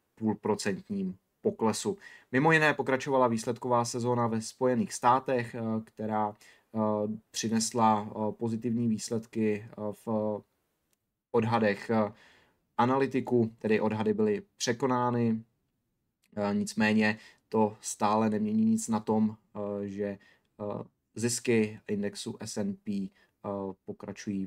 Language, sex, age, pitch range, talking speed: Czech, male, 20-39, 105-120 Hz, 80 wpm